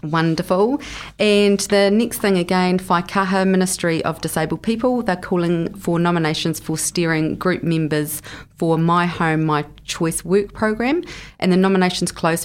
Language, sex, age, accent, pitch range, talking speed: English, female, 30-49, Australian, 155-190 Hz, 145 wpm